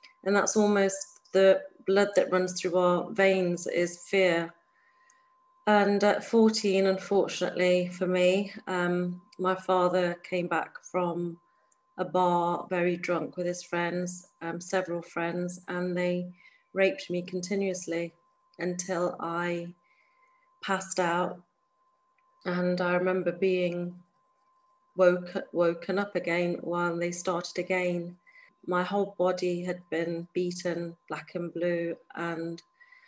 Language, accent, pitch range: English, British, 175-200 Hz